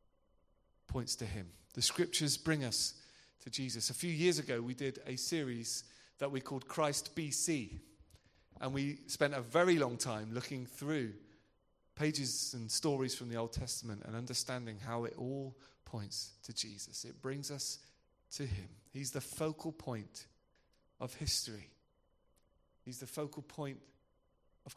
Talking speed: 150 wpm